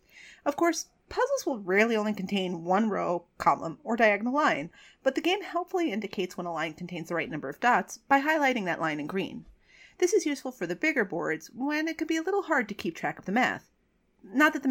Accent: American